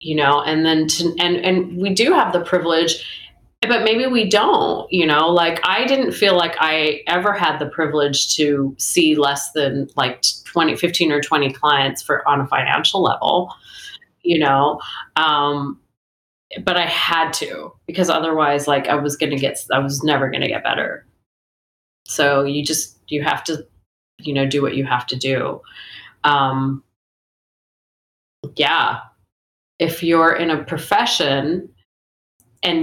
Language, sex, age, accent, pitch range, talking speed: English, female, 30-49, American, 135-170 Hz, 155 wpm